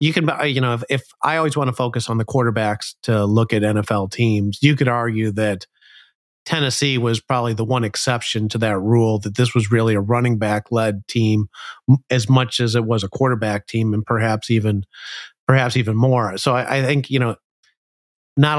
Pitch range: 110-130 Hz